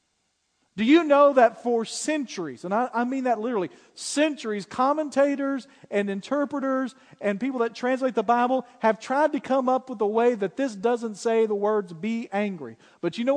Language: English